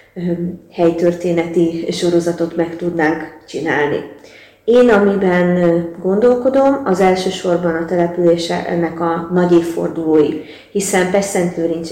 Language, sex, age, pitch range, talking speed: Hungarian, female, 30-49, 165-190 Hz, 90 wpm